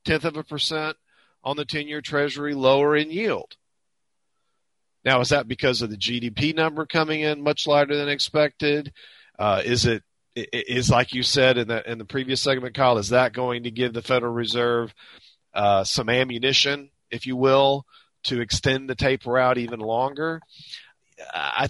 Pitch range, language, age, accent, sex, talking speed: 120-145 Hz, English, 40-59, American, male, 170 wpm